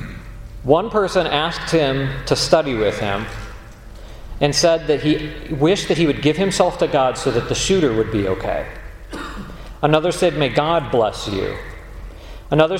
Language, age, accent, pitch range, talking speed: English, 40-59, American, 110-170 Hz, 160 wpm